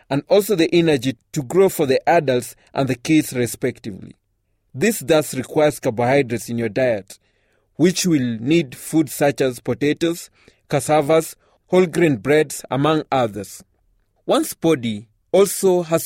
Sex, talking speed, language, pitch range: male, 140 wpm, English, 120-160 Hz